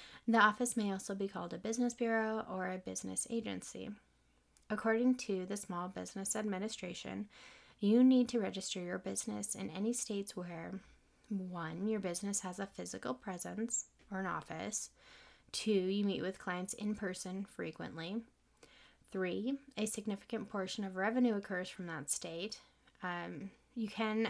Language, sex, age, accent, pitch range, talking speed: English, female, 10-29, American, 175-220 Hz, 150 wpm